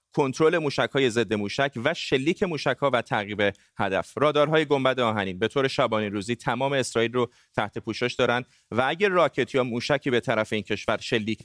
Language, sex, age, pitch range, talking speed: Persian, male, 30-49, 110-135 Hz, 180 wpm